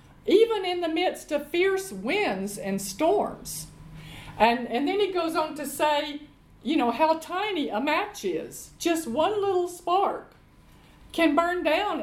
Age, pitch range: 50-69, 235-335 Hz